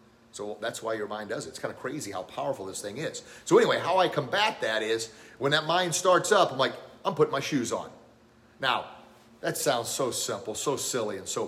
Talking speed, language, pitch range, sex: 230 wpm, English, 115-150 Hz, male